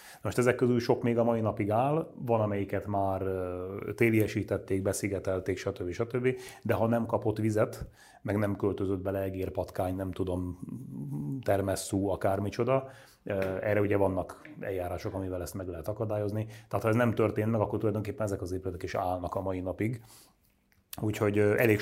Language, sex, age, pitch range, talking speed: Hungarian, male, 30-49, 95-110 Hz, 160 wpm